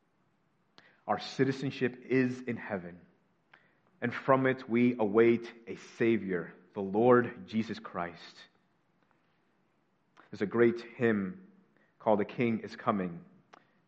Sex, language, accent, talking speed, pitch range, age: male, English, American, 110 wpm, 115-145 Hz, 30-49